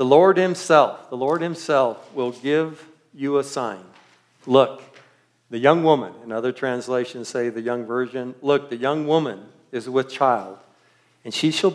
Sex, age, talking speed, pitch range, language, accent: male, 50-69, 165 wpm, 115-135 Hz, English, American